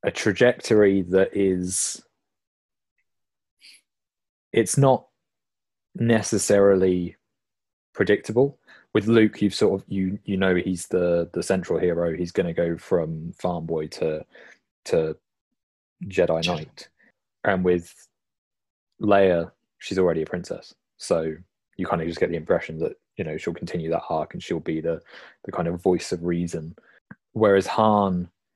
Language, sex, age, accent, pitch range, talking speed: English, male, 20-39, British, 85-95 Hz, 130 wpm